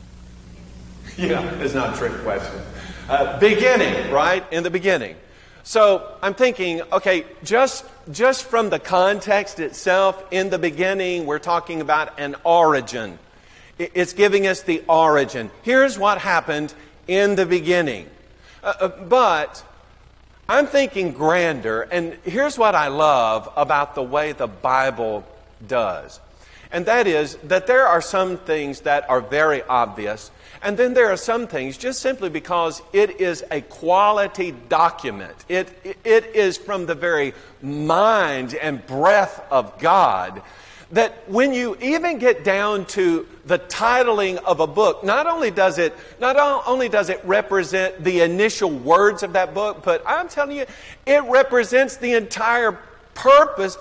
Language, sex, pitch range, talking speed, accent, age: English, male, 155-230 Hz, 145 wpm, American, 50-69